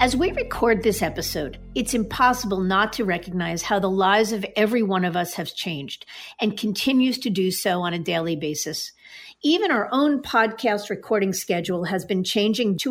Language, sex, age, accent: English, female, 50-69, American